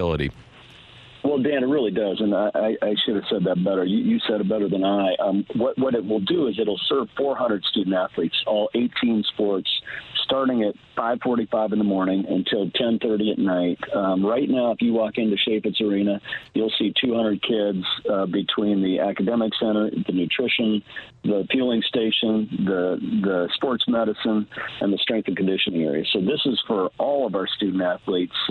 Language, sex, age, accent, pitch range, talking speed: English, male, 50-69, American, 100-120 Hz, 185 wpm